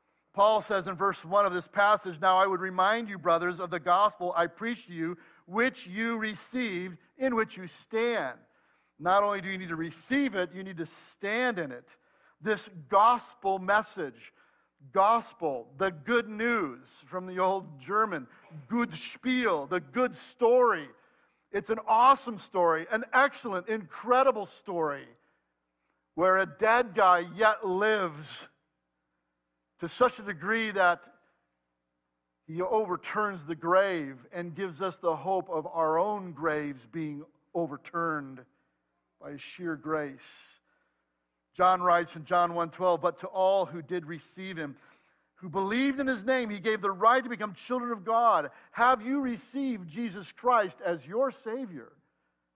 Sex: male